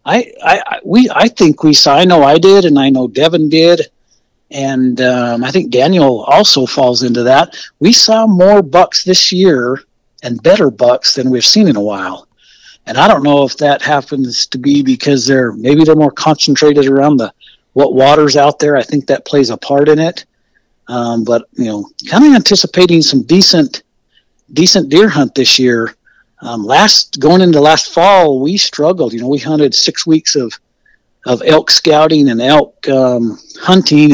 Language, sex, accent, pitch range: English, male, American, 125-155 Hz